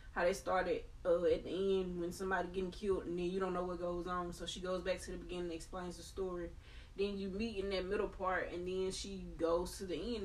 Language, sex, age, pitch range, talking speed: English, female, 20-39, 170-205 Hz, 260 wpm